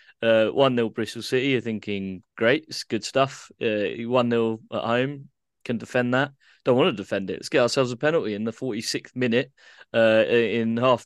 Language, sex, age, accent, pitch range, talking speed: English, male, 20-39, British, 110-130 Hz, 195 wpm